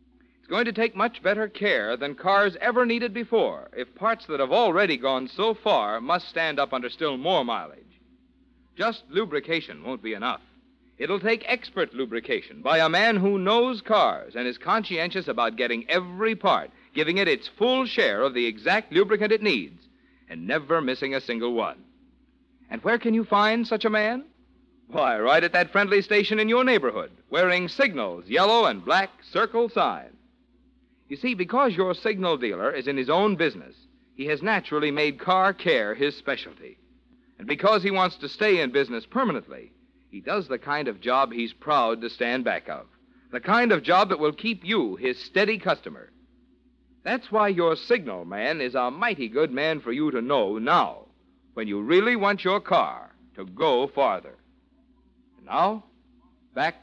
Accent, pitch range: American, 160-250 Hz